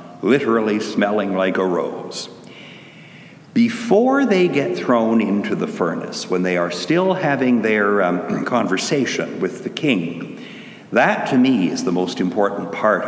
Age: 60-79